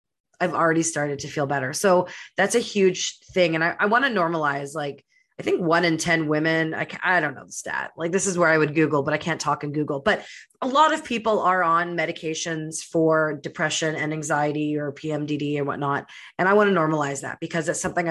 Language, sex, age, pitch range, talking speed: English, female, 30-49, 155-185 Hz, 220 wpm